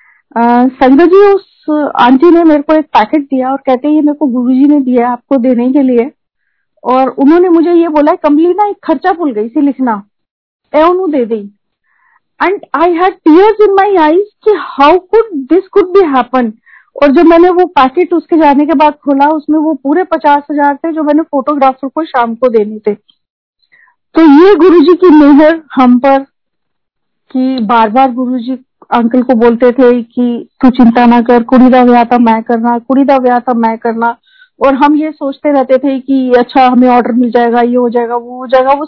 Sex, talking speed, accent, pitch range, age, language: female, 170 wpm, native, 250-315 Hz, 40-59, Hindi